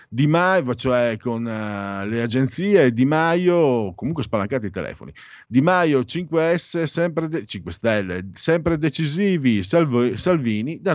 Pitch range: 100-155 Hz